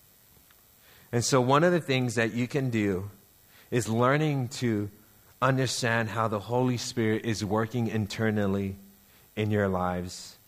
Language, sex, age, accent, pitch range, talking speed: English, male, 40-59, American, 100-120 Hz, 135 wpm